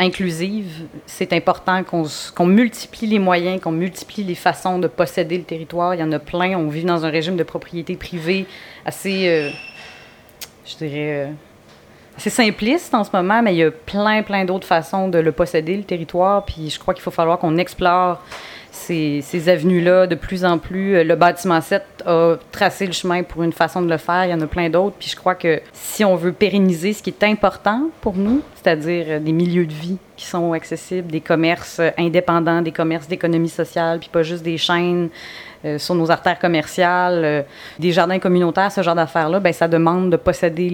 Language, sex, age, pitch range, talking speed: French, female, 30-49, 160-185 Hz, 195 wpm